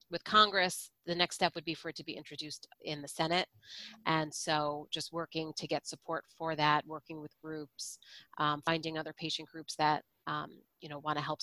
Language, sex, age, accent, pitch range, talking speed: English, female, 30-49, American, 150-175 Hz, 205 wpm